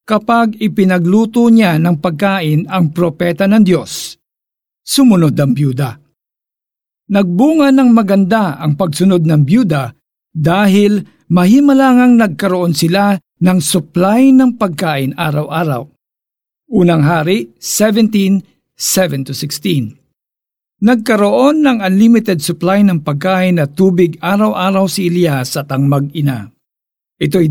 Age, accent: 50-69, native